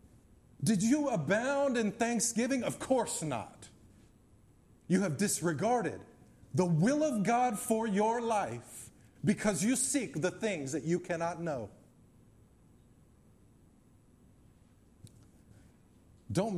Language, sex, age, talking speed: English, male, 50-69, 100 wpm